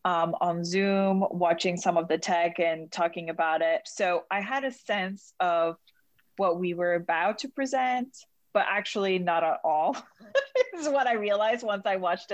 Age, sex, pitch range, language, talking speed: 20-39, female, 170-215 Hz, English, 175 wpm